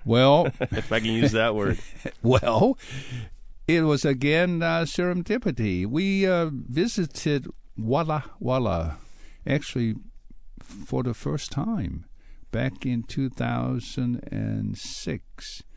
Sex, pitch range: male, 105-135 Hz